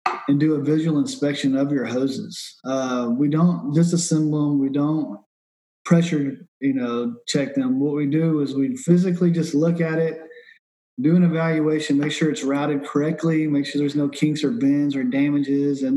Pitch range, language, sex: 140-170 Hz, English, male